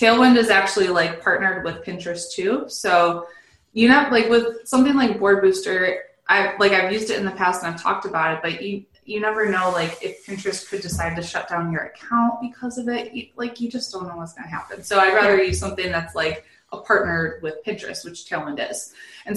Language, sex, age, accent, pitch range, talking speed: English, female, 20-39, American, 170-235 Hz, 225 wpm